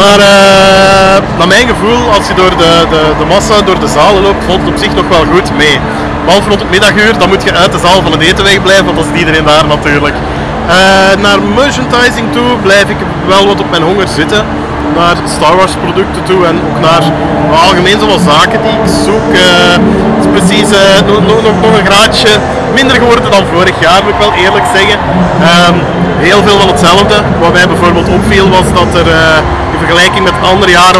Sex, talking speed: male, 215 wpm